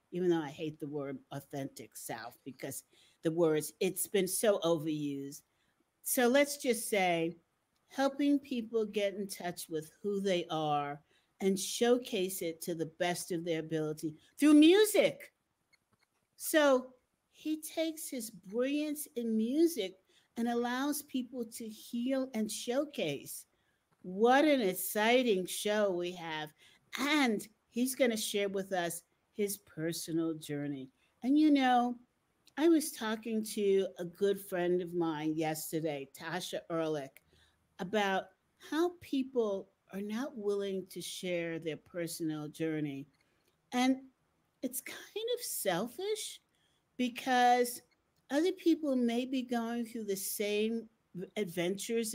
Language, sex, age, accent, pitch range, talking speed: English, female, 50-69, American, 175-250 Hz, 125 wpm